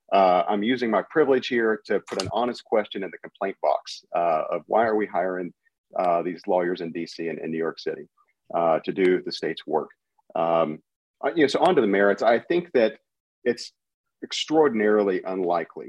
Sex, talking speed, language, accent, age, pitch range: male, 190 wpm, English, American, 40-59, 90-135 Hz